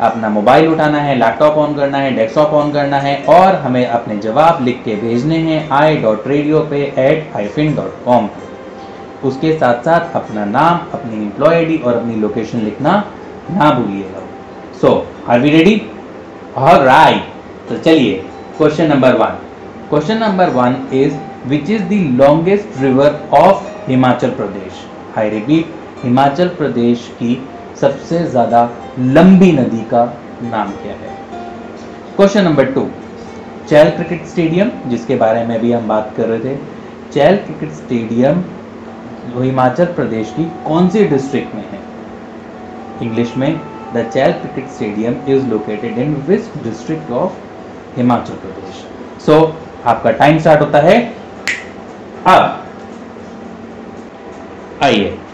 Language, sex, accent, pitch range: English, male, Indian, 120-165 Hz